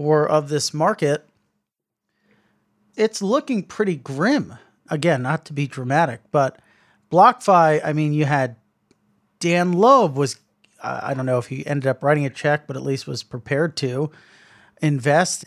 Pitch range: 135-170 Hz